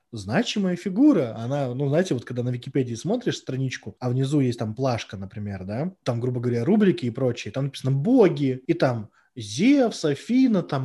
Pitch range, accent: 120-150 Hz, native